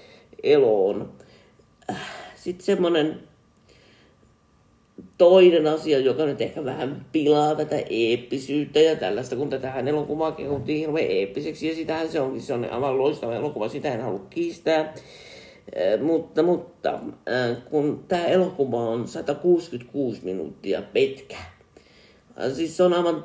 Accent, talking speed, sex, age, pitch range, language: native, 120 wpm, male, 50-69, 140-165 Hz, Finnish